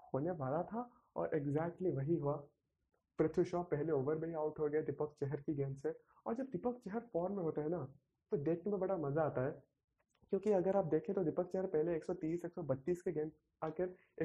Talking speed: 210 wpm